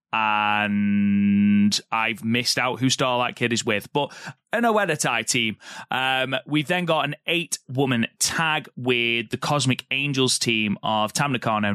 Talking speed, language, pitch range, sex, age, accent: 140 wpm, English, 110-135 Hz, male, 30-49, British